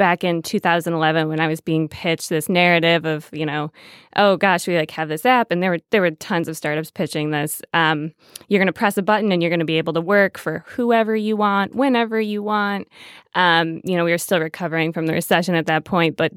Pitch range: 160-200 Hz